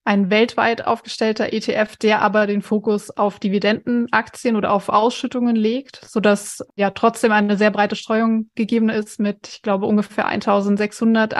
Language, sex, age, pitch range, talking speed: German, female, 20-39, 205-225 Hz, 155 wpm